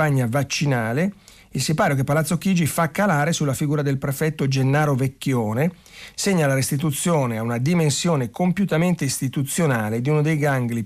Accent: native